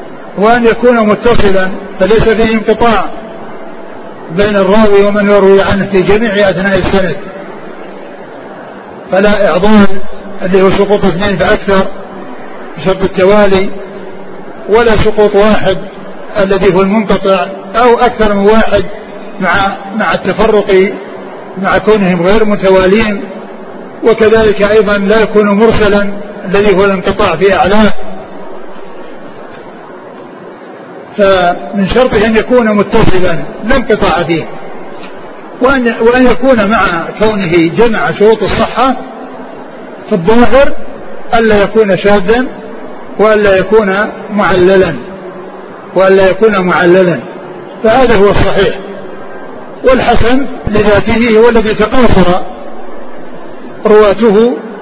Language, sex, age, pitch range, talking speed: Arabic, male, 50-69, 195-220 Hz, 90 wpm